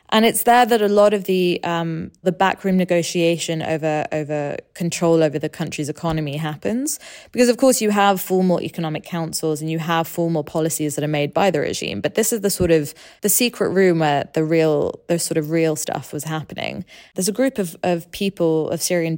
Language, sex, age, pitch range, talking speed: English, female, 20-39, 160-195 Hz, 205 wpm